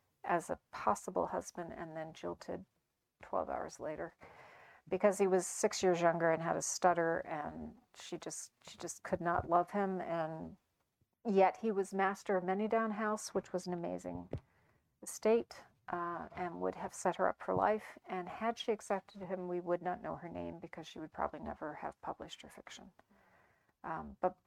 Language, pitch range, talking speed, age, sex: English, 170-200 Hz, 180 wpm, 40-59, female